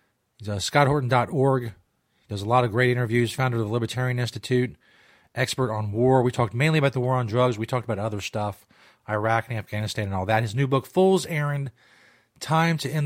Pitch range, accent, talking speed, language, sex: 110-140 Hz, American, 210 wpm, English, male